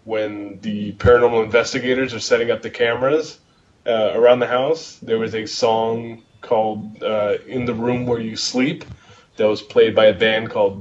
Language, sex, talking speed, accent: English, male, 180 wpm, American